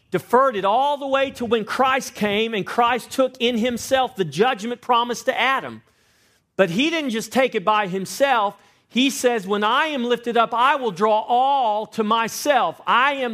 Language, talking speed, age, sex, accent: English, 190 wpm, 40-59, male, American